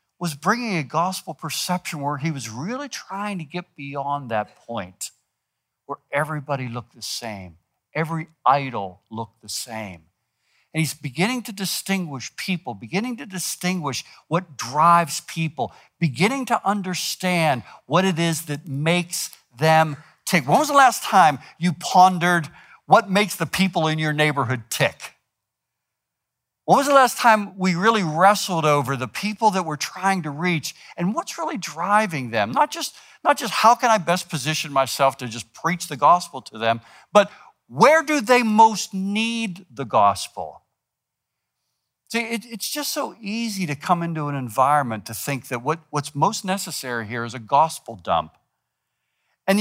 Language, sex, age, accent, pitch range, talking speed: English, male, 60-79, American, 145-205 Hz, 155 wpm